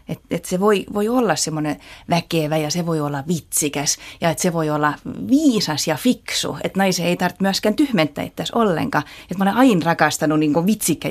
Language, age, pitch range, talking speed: Finnish, 30-49, 155-200 Hz, 190 wpm